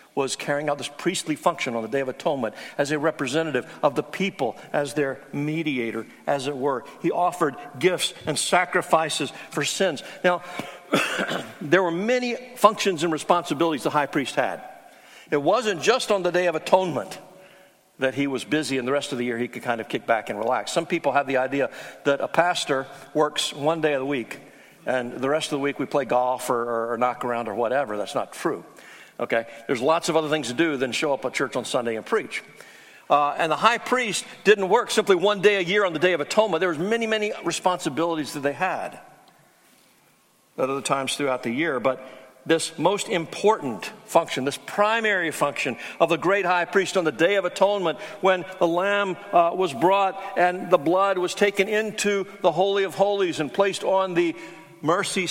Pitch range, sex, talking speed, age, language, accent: 145-195 Hz, male, 205 wpm, 60-79, English, American